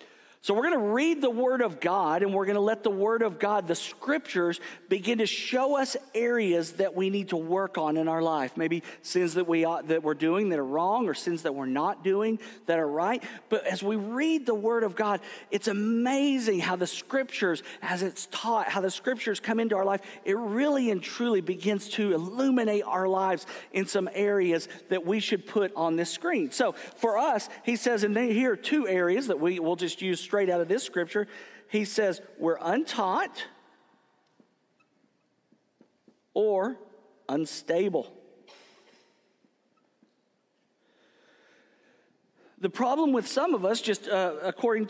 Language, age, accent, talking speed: English, 50-69, American, 180 wpm